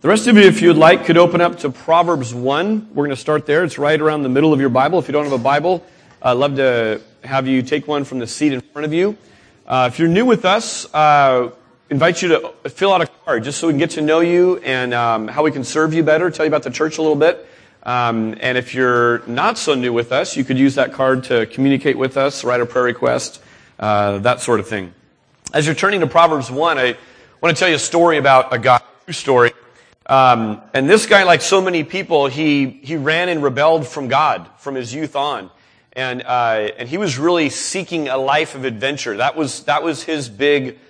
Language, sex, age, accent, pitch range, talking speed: English, male, 40-59, American, 125-165 Hz, 240 wpm